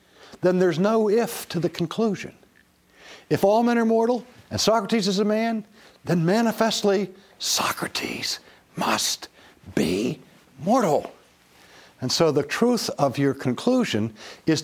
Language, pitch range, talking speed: English, 115-180 Hz, 125 wpm